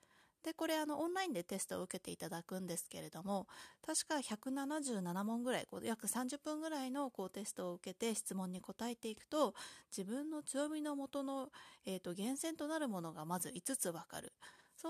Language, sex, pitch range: Japanese, female, 175-275 Hz